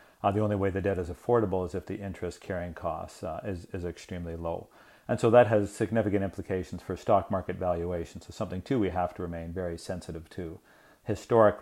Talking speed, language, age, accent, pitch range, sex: 205 wpm, English, 40-59, American, 90-105 Hz, male